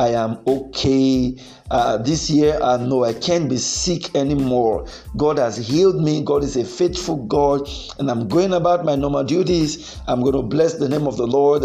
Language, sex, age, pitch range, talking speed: English, male, 50-69, 145-215 Hz, 195 wpm